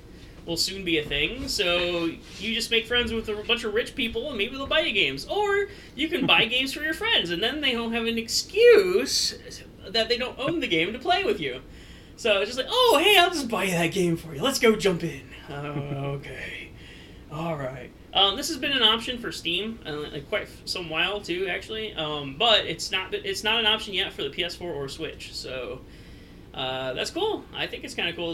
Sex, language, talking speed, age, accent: male, English, 220 wpm, 30-49, American